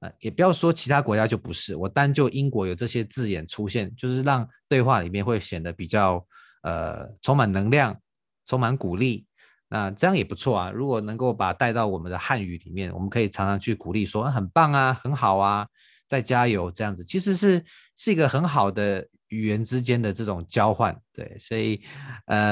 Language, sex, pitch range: Chinese, male, 95-130 Hz